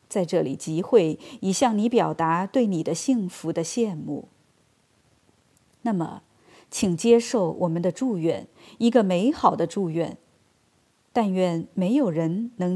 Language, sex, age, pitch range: Chinese, female, 30-49, 170-235 Hz